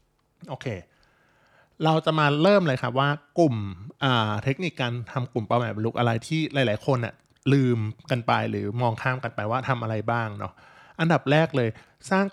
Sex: male